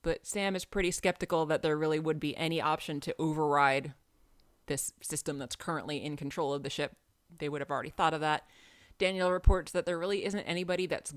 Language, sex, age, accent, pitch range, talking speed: English, female, 20-39, American, 155-200 Hz, 205 wpm